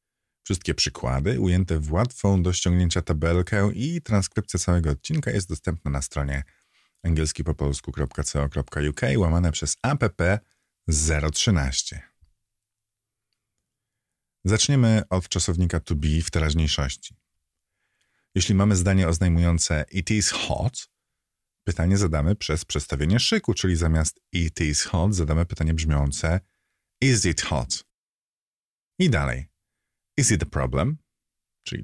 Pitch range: 75-100 Hz